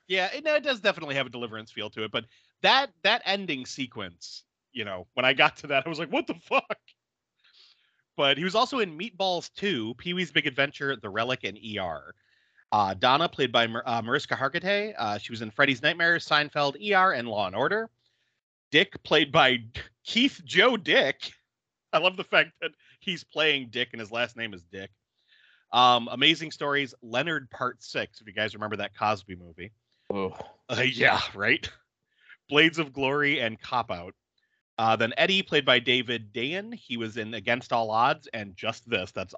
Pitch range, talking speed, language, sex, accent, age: 110-155 Hz, 185 wpm, English, male, American, 30-49